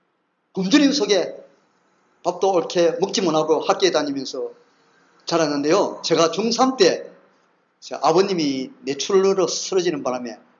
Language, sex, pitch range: Korean, male, 165-265 Hz